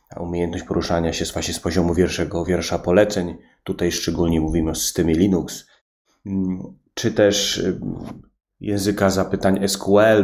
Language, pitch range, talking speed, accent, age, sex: Polish, 90-105 Hz, 115 wpm, native, 30-49, male